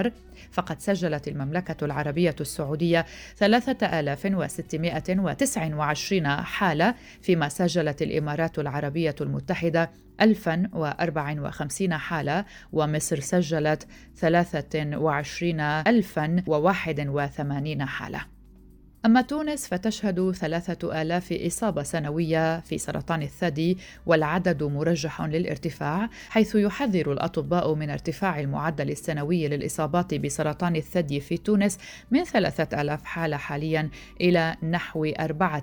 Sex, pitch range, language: female, 150-180 Hz, Arabic